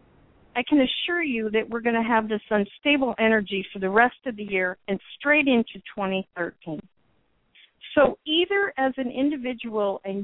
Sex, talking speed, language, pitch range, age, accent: female, 165 wpm, English, 210-265 Hz, 50-69, American